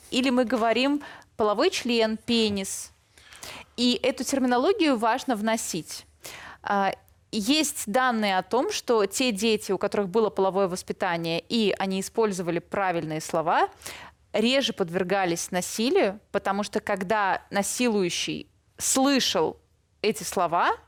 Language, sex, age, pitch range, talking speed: Russian, female, 20-39, 195-250 Hz, 110 wpm